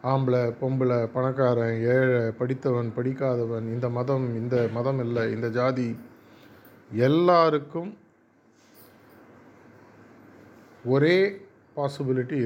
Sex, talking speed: male, 75 wpm